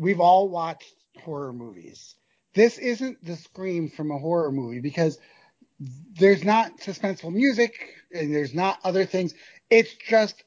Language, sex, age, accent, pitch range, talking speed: English, male, 30-49, American, 155-205 Hz, 145 wpm